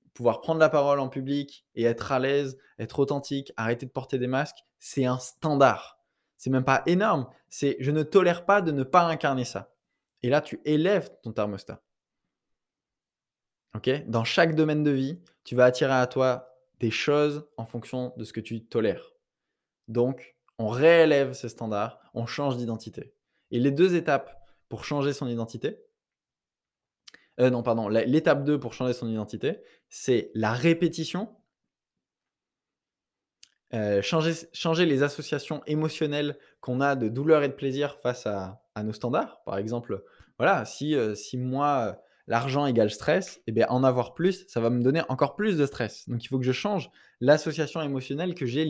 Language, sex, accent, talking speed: French, male, French, 175 wpm